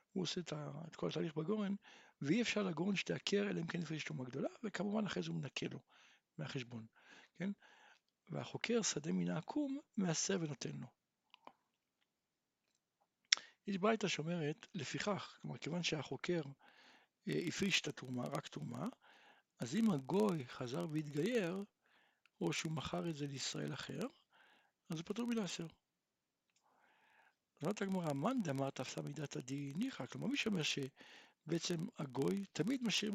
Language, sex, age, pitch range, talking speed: Hebrew, male, 60-79, 150-225 Hz, 125 wpm